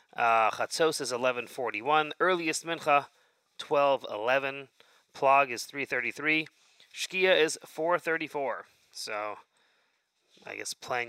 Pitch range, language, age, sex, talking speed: 115-155 Hz, English, 30-49, male, 90 wpm